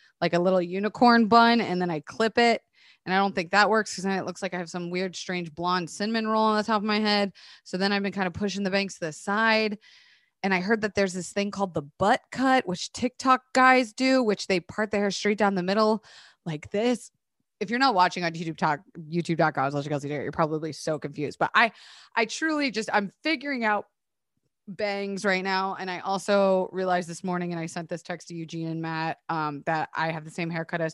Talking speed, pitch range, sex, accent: 240 wpm, 170-220 Hz, female, American